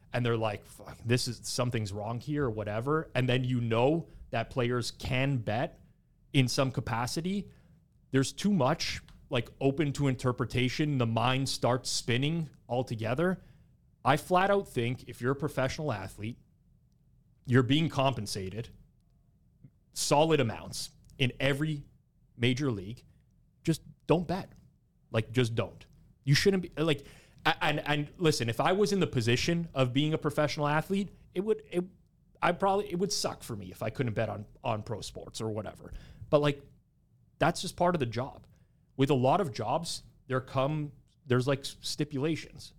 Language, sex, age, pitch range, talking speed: English, male, 30-49, 120-155 Hz, 160 wpm